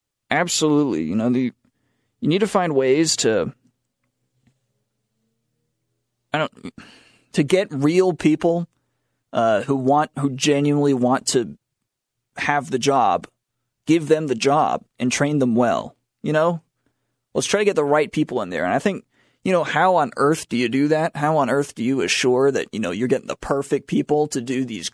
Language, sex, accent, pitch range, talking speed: English, male, American, 125-145 Hz, 180 wpm